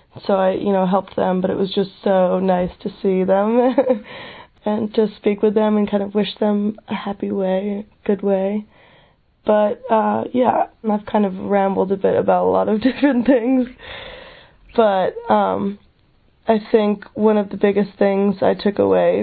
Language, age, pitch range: English, 20-39, 190-215 Hz